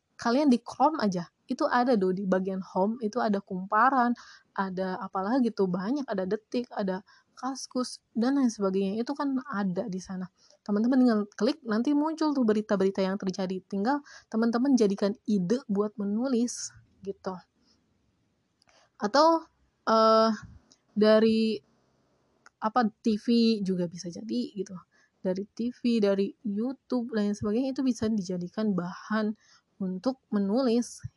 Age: 20-39